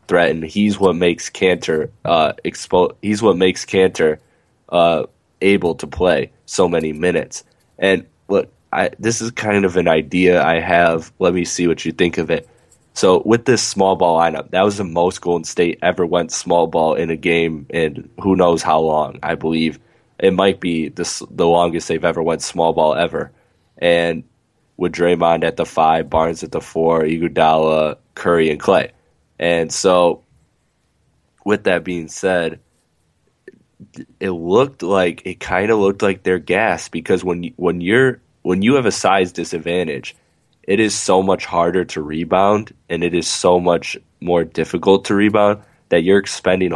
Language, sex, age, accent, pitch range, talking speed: English, male, 10-29, American, 80-95 Hz, 170 wpm